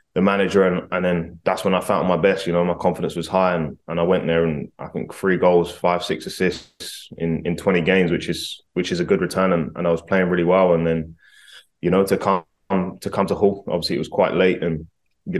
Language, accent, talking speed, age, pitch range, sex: English, British, 255 wpm, 20-39, 85-95 Hz, male